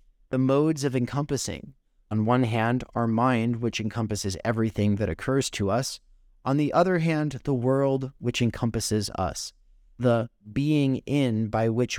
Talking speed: 150 wpm